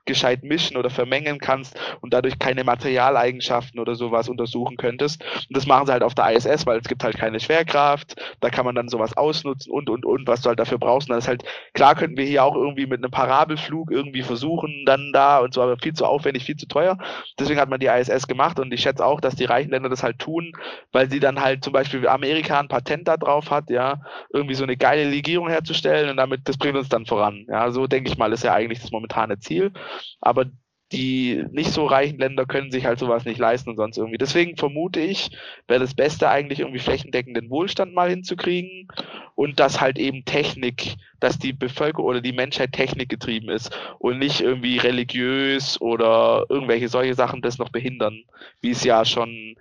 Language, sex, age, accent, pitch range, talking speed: German, male, 20-39, German, 120-145 Hz, 210 wpm